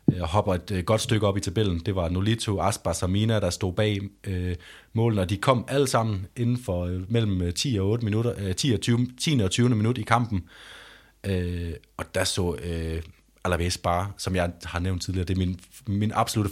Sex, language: male, Danish